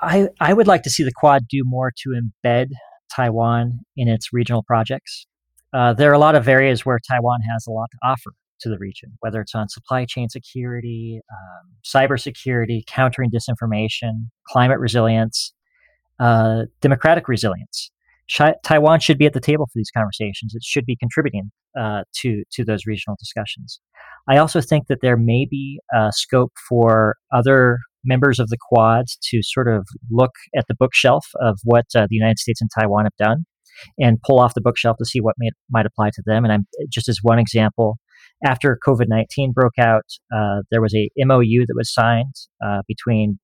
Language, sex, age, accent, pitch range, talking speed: English, male, 40-59, American, 110-130 Hz, 185 wpm